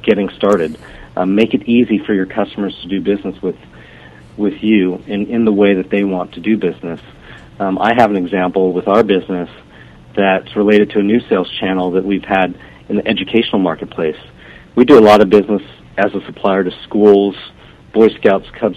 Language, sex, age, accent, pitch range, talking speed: English, male, 50-69, American, 90-105 Hz, 195 wpm